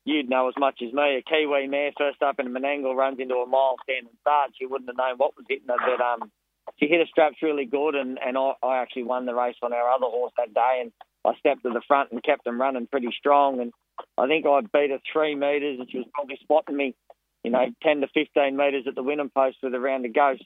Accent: Australian